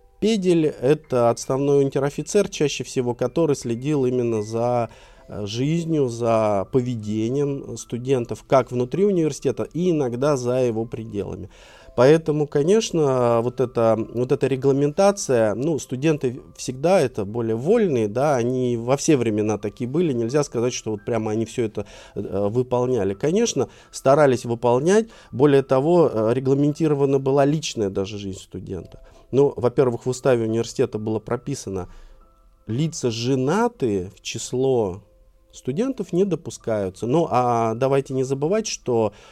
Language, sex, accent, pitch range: Russian, male, native, 115-145 Hz